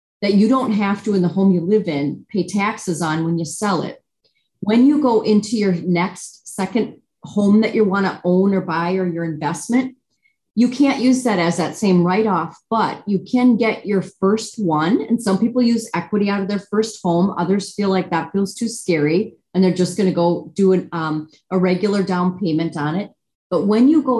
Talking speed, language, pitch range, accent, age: 220 wpm, English, 175-220 Hz, American, 30-49